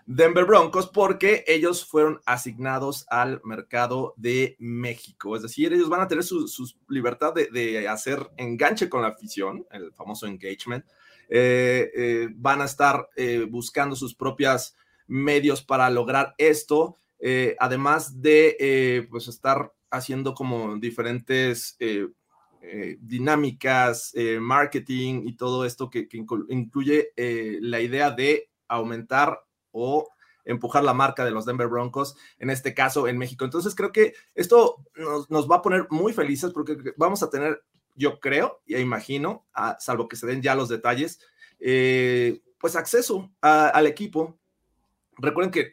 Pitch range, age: 120-155 Hz, 30-49